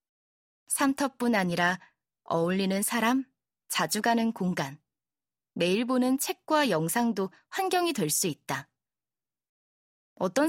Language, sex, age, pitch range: Korean, female, 20-39, 175-250 Hz